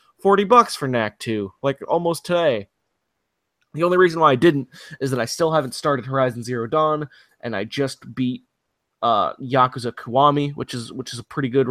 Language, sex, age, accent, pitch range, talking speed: English, male, 20-39, American, 115-145 Hz, 190 wpm